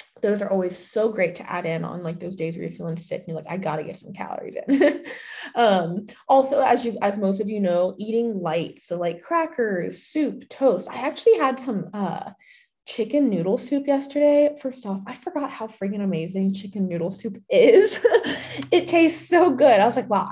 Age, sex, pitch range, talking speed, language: 20-39, female, 185-260 Hz, 205 wpm, English